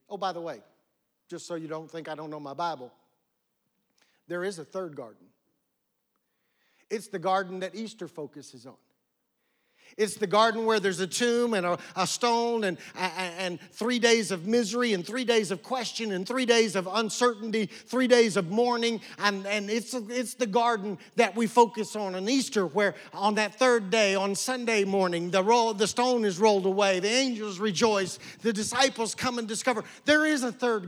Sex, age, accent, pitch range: male, 50-69, American, 180-230 Hz